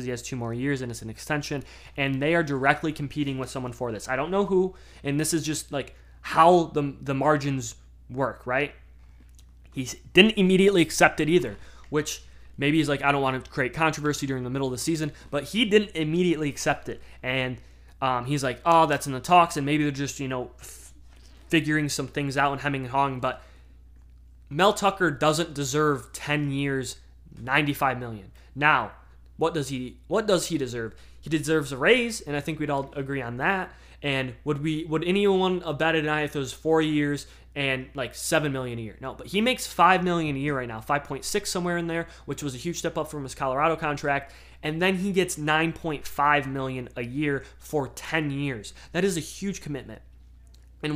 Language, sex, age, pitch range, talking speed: English, male, 20-39, 130-160 Hz, 205 wpm